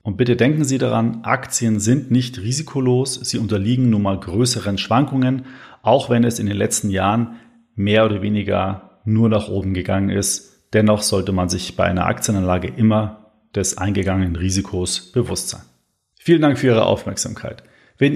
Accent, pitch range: German, 100-125 Hz